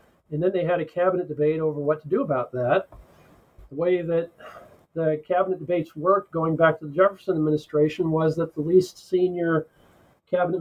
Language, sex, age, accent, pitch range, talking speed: English, male, 40-59, American, 150-185 Hz, 180 wpm